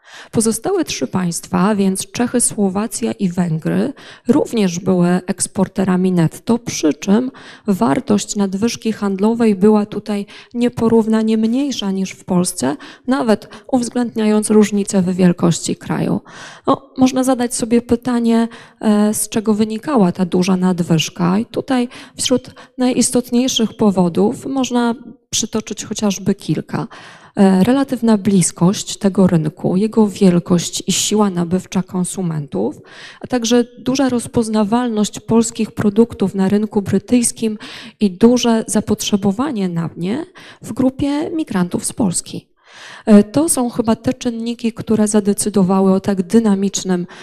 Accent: native